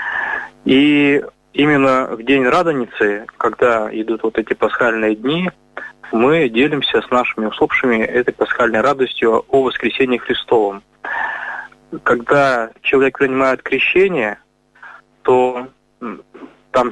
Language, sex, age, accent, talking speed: Russian, male, 20-39, native, 100 wpm